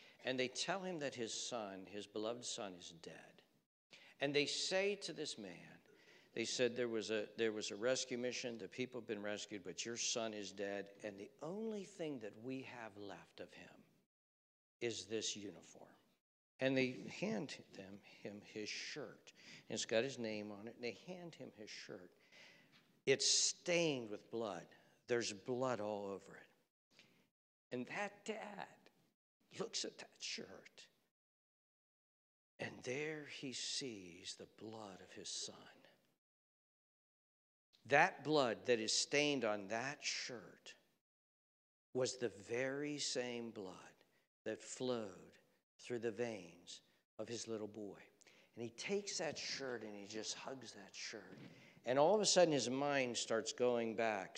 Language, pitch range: English, 105-135 Hz